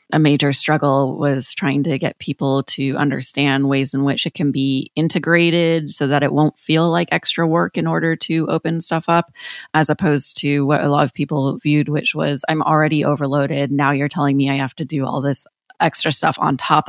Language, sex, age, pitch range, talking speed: English, female, 20-39, 140-160 Hz, 210 wpm